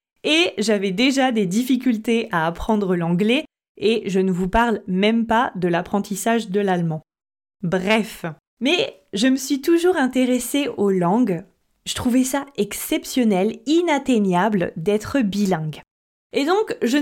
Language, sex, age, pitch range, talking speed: French, female, 20-39, 200-285 Hz, 135 wpm